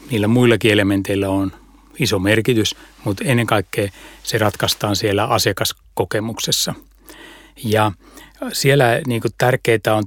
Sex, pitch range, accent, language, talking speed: male, 105-135 Hz, native, Finnish, 105 wpm